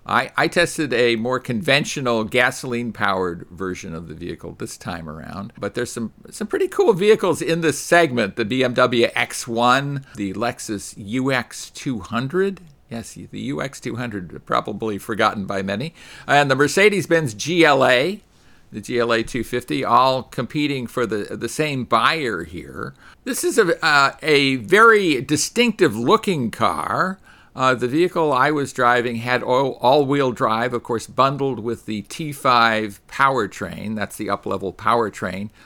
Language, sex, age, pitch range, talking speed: English, male, 50-69, 110-150 Hz, 135 wpm